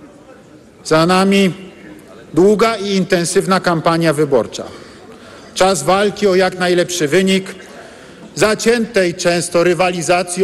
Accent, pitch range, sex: native, 180-205 Hz, male